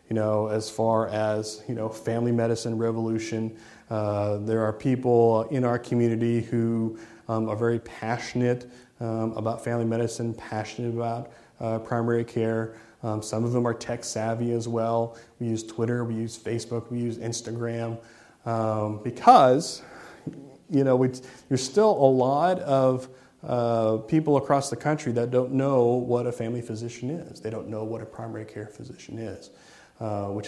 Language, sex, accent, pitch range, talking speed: English, male, American, 110-120 Hz, 160 wpm